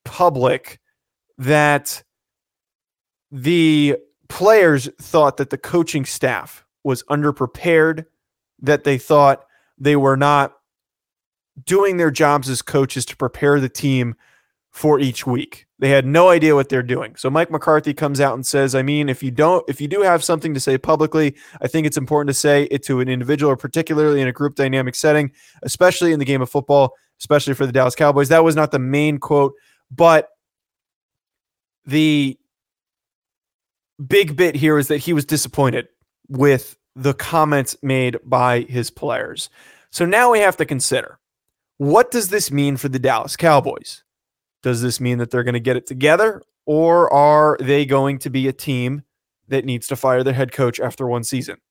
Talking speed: 175 wpm